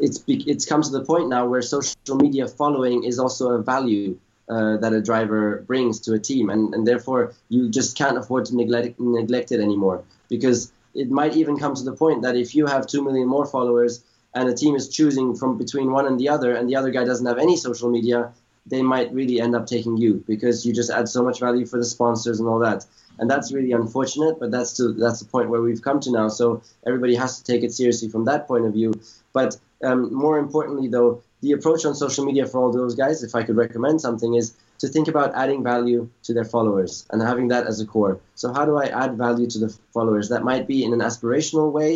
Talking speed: 240 wpm